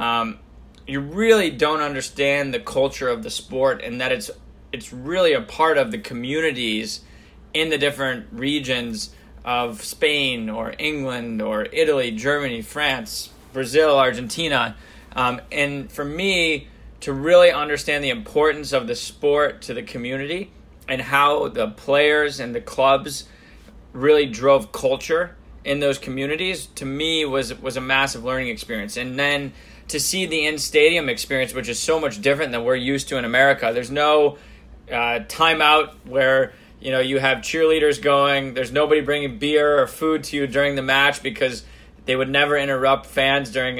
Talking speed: 160 wpm